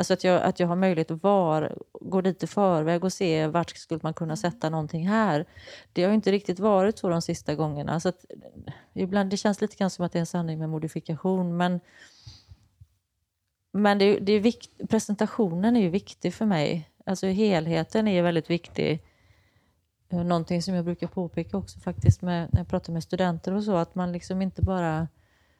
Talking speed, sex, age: 200 wpm, female, 30-49